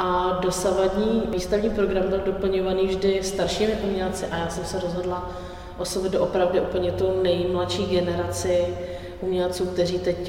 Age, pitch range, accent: 20-39, 175-190 Hz, native